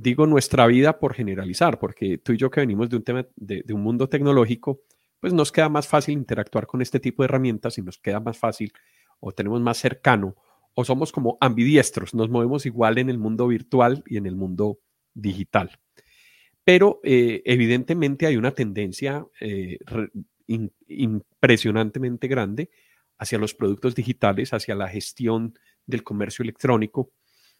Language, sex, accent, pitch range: Spanish, male, Colombian, 110-135 Hz